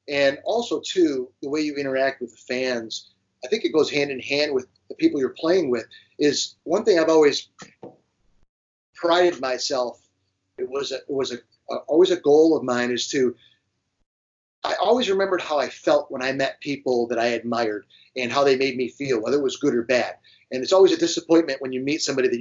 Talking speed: 210 wpm